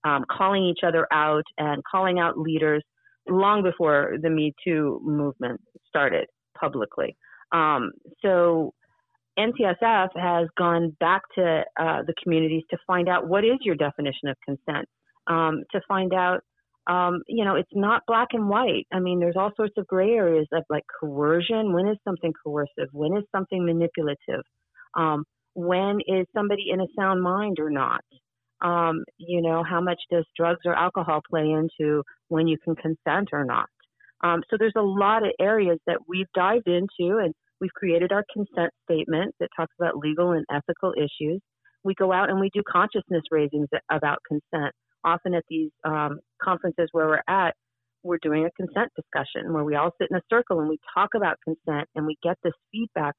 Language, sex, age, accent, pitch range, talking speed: English, female, 40-59, American, 155-190 Hz, 180 wpm